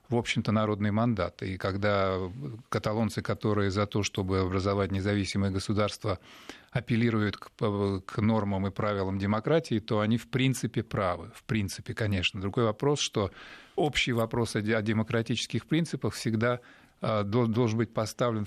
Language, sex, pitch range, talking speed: Russian, male, 105-120 Hz, 130 wpm